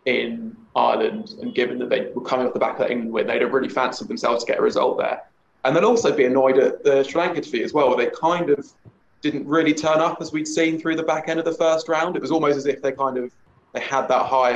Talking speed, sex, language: 280 wpm, male, English